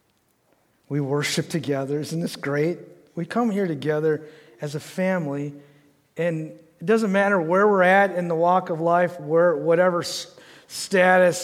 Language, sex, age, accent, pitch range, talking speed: English, male, 50-69, American, 170-245 Hz, 145 wpm